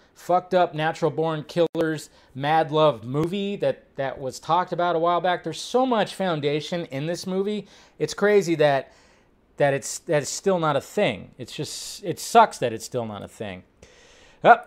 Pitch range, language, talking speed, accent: 125-180 Hz, English, 185 wpm, American